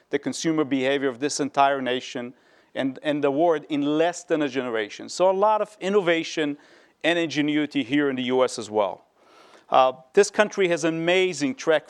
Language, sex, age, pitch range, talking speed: English, male, 40-59, 140-180 Hz, 180 wpm